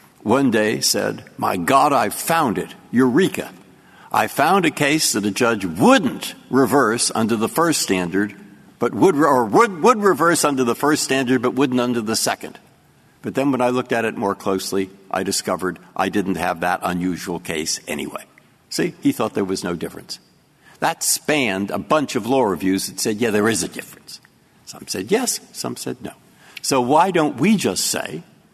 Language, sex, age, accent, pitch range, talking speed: English, male, 60-79, American, 95-155 Hz, 185 wpm